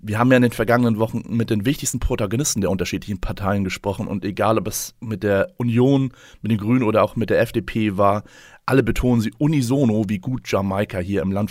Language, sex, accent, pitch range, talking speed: German, male, German, 105-125 Hz, 215 wpm